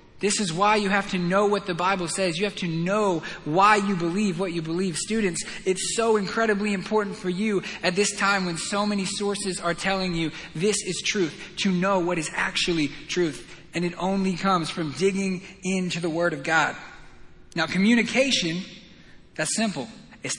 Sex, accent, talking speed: male, American, 185 wpm